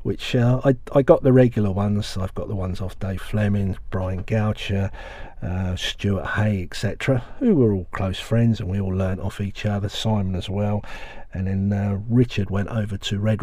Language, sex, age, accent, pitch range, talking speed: English, male, 50-69, British, 100-120 Hz, 195 wpm